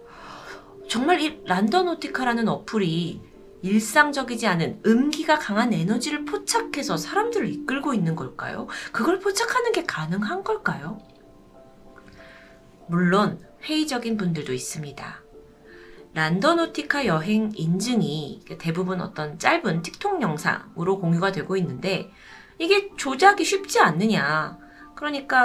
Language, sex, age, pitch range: Korean, female, 30-49, 185-295 Hz